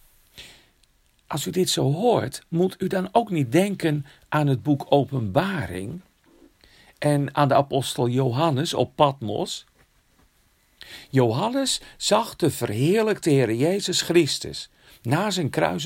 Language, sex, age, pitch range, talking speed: Dutch, male, 50-69, 130-190 Hz, 120 wpm